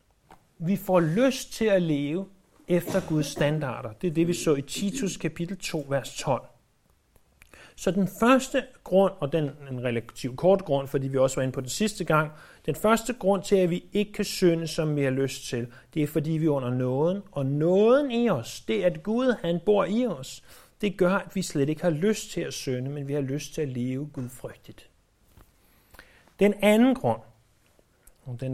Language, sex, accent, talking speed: Danish, male, native, 200 wpm